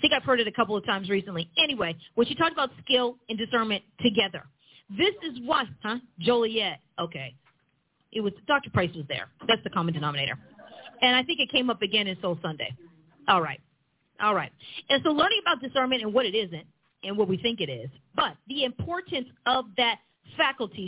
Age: 40-59